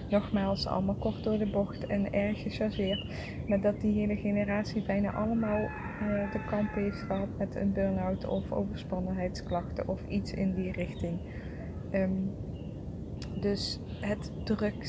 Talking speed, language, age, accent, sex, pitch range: 140 wpm, English, 20-39, Dutch, female, 185-210 Hz